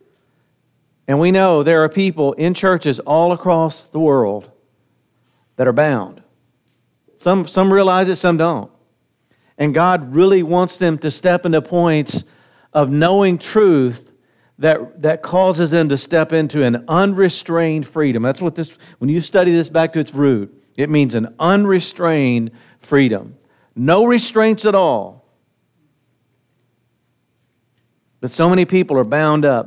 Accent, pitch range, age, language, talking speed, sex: American, 135-180 Hz, 50-69, English, 140 wpm, male